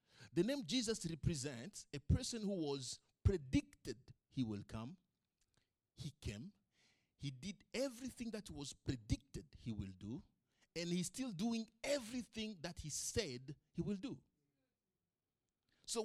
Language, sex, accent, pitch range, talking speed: English, male, Nigerian, 130-215 Hz, 130 wpm